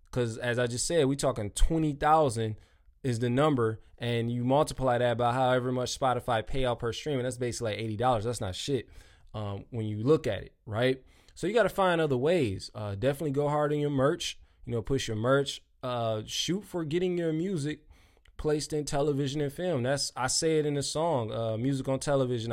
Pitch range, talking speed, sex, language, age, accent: 120-150 Hz, 210 wpm, male, English, 20-39, American